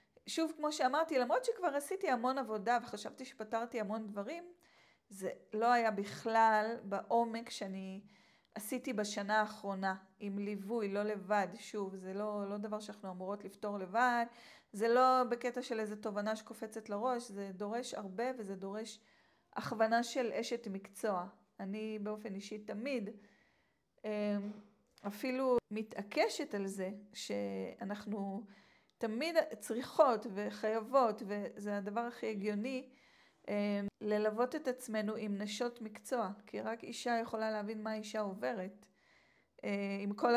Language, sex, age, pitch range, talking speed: Hebrew, female, 40-59, 205-240 Hz, 125 wpm